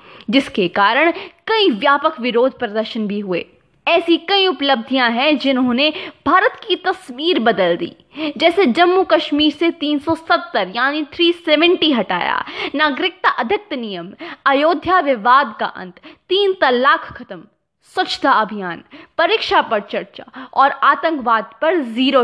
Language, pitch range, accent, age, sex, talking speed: Hindi, 245-340 Hz, native, 20-39, female, 120 wpm